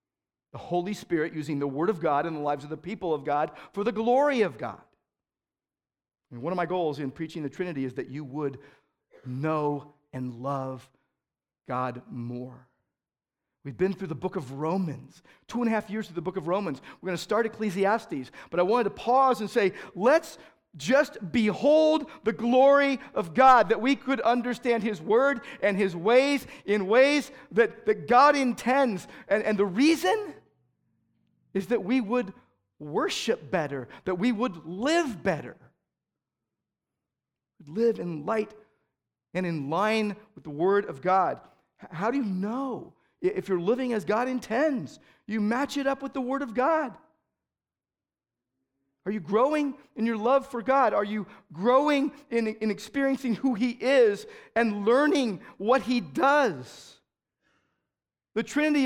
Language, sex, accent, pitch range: English, male, American, 160-255 Hz